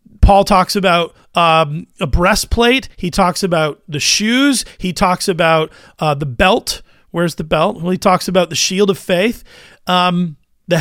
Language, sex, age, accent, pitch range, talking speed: English, male, 30-49, American, 165-215 Hz, 165 wpm